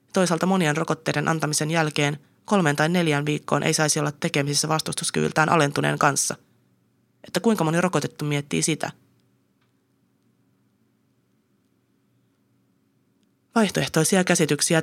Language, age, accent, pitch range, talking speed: Finnish, 30-49, native, 145-175 Hz, 95 wpm